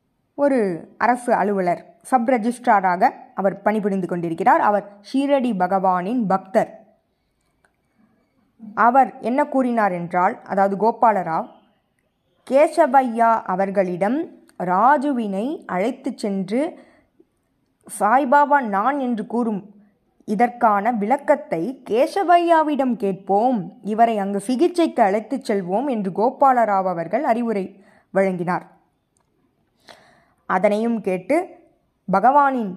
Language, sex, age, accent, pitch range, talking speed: Tamil, female, 20-39, native, 195-265 Hz, 80 wpm